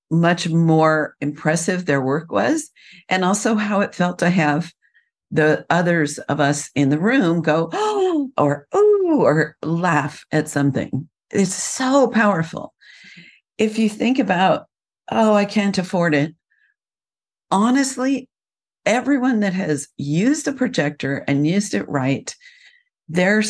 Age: 50-69